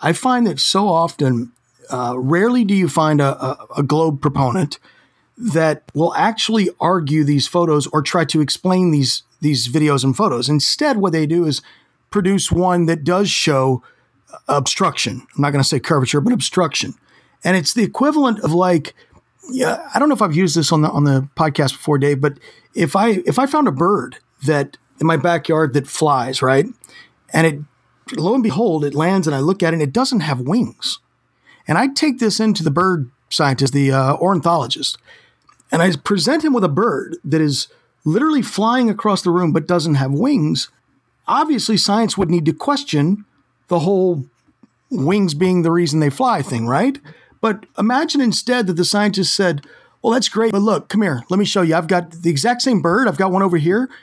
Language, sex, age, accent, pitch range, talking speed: English, male, 40-59, American, 150-210 Hz, 195 wpm